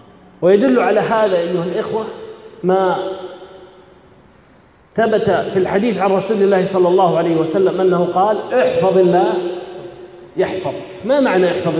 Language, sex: Arabic, male